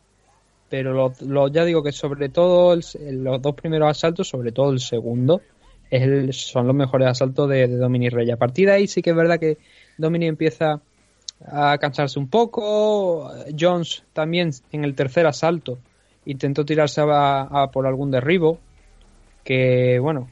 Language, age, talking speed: Spanish, 20-39, 170 wpm